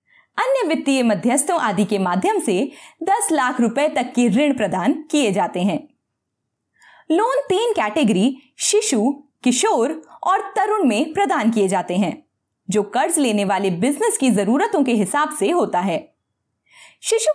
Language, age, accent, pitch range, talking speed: Hindi, 20-39, native, 220-360 Hz, 145 wpm